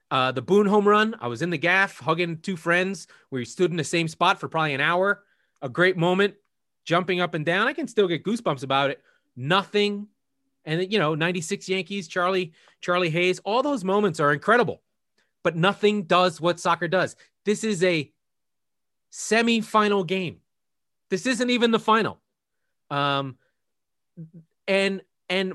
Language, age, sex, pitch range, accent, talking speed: English, 30-49, male, 140-185 Hz, American, 165 wpm